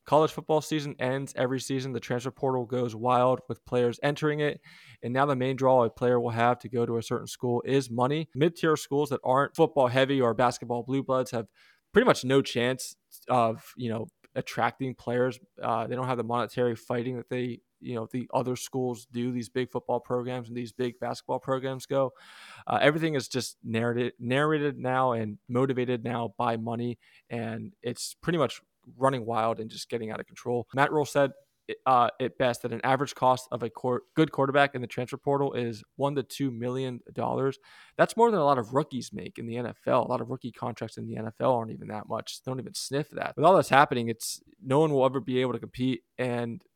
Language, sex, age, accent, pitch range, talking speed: English, male, 20-39, American, 120-135 Hz, 215 wpm